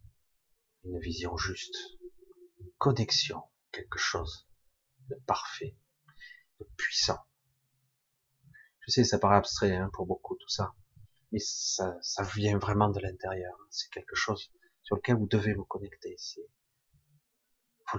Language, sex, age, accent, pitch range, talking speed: French, male, 40-59, French, 95-145 Hz, 130 wpm